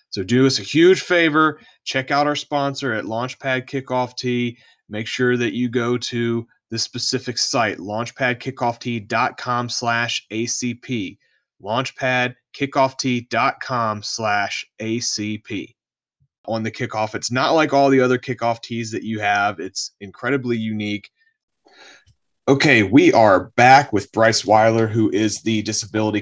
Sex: male